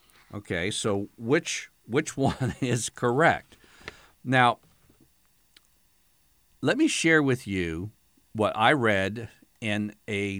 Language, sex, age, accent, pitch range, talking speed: English, male, 50-69, American, 100-145 Hz, 105 wpm